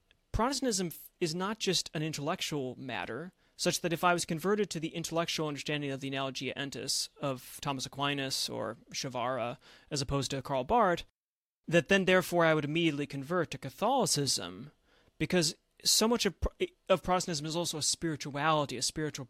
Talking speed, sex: 160 wpm, male